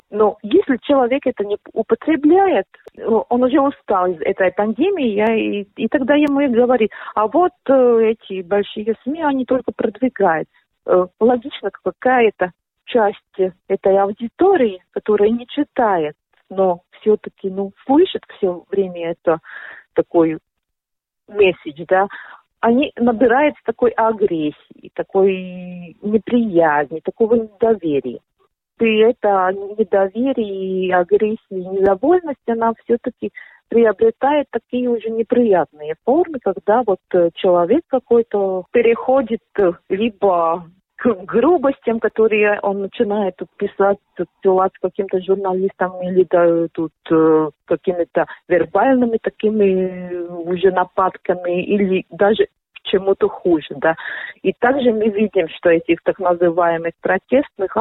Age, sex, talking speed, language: 40-59, female, 105 wpm, Russian